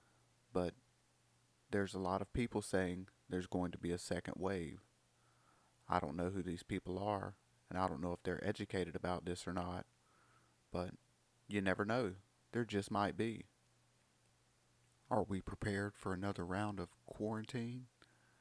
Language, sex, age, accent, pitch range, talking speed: English, male, 30-49, American, 90-105 Hz, 155 wpm